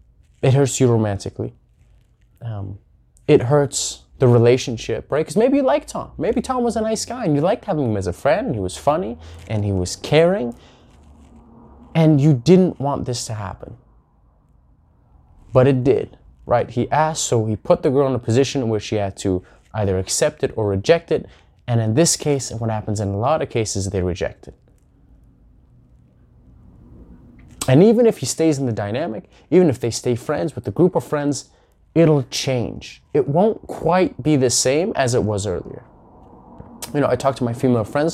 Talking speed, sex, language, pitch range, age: 185 wpm, male, English, 110-155 Hz, 20-39